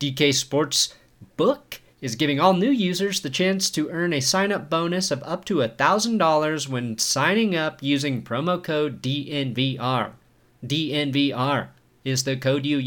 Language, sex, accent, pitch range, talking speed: English, male, American, 135-195 Hz, 140 wpm